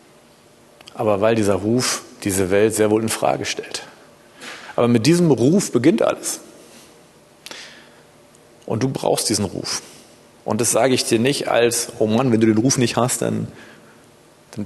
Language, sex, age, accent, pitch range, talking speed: German, male, 40-59, German, 110-125 Hz, 160 wpm